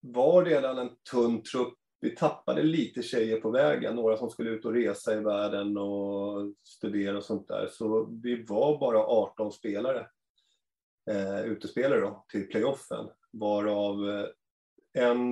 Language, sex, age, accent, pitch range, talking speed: Swedish, male, 30-49, native, 100-120 Hz, 140 wpm